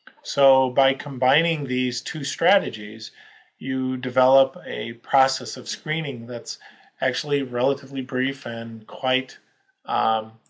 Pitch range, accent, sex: 125-145 Hz, American, male